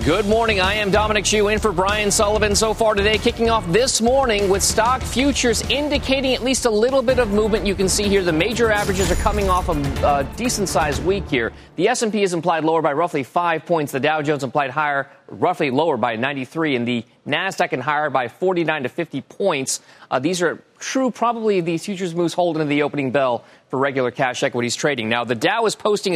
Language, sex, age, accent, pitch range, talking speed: English, male, 30-49, American, 145-210 Hz, 220 wpm